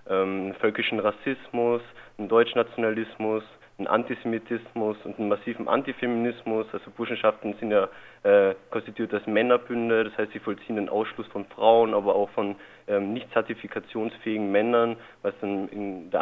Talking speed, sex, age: 145 wpm, male, 20-39